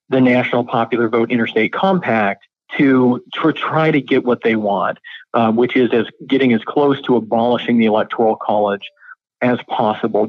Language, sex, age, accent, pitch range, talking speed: English, male, 40-59, American, 120-160 Hz, 165 wpm